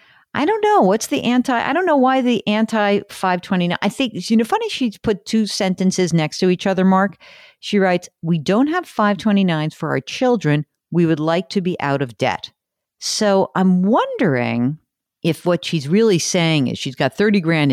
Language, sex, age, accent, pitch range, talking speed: English, female, 50-69, American, 135-200 Hz, 195 wpm